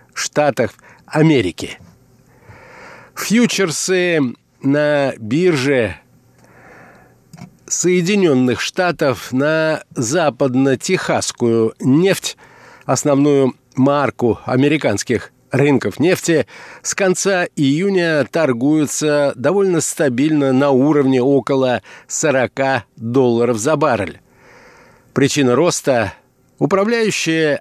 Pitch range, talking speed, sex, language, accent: 125-160 Hz, 70 wpm, male, Russian, native